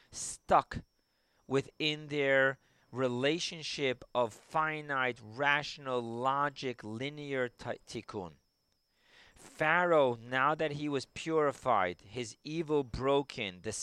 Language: English